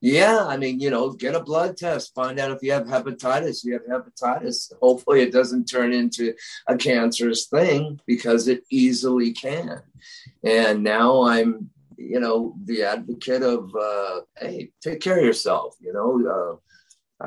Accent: American